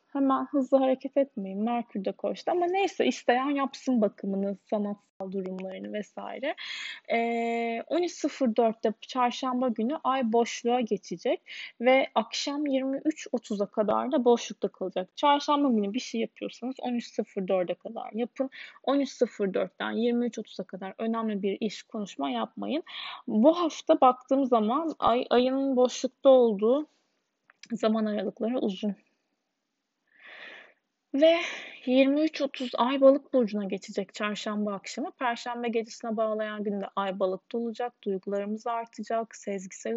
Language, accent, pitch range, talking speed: Turkish, native, 215-270 Hz, 110 wpm